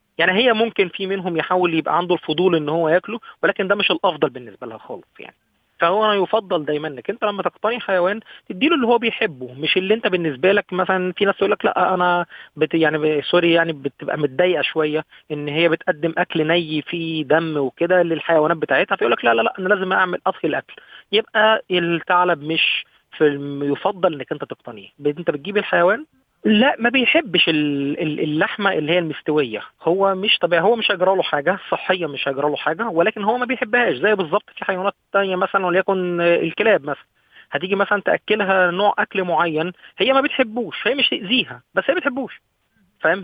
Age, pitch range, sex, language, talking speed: 30-49, 160-205 Hz, male, Arabic, 185 wpm